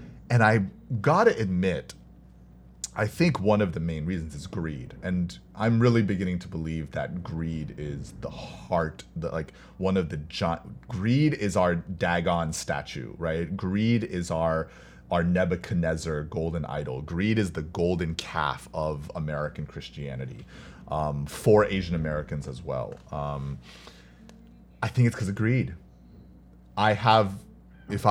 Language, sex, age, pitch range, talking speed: English, male, 30-49, 65-105 Hz, 145 wpm